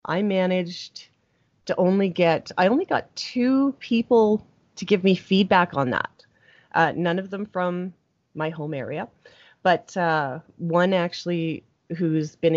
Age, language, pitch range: 30-49, English, 155-190 Hz